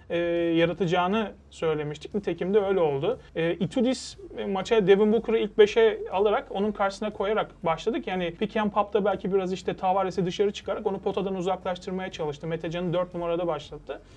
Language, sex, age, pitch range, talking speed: Turkish, male, 30-49, 165-205 Hz, 155 wpm